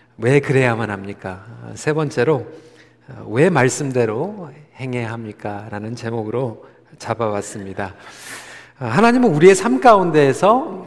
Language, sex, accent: Korean, male, native